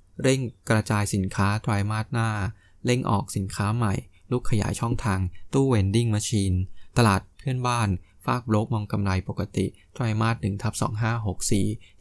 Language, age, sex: Thai, 20-39, male